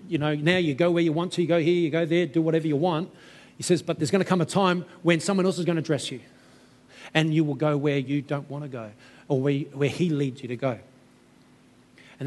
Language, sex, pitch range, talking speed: English, male, 145-185 Hz, 270 wpm